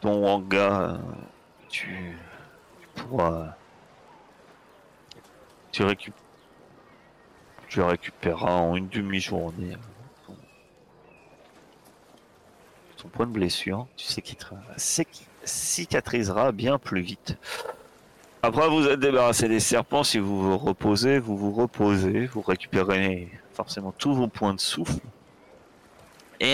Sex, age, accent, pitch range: male, 40-59, French, 95-120 Hz